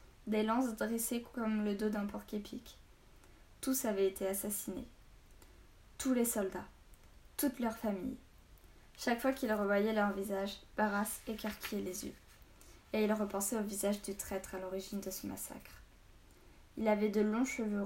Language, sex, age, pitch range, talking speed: French, female, 10-29, 190-225 Hz, 155 wpm